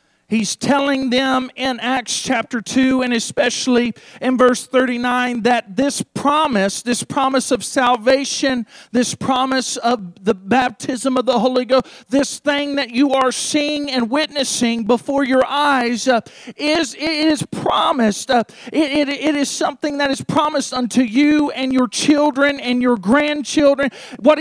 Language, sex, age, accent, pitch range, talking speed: English, male, 40-59, American, 255-295 Hz, 150 wpm